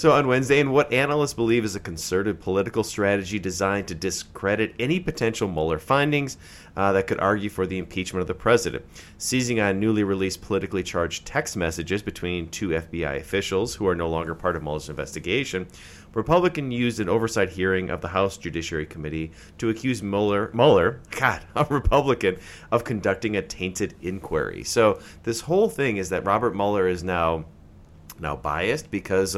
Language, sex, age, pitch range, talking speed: English, male, 30-49, 90-115 Hz, 170 wpm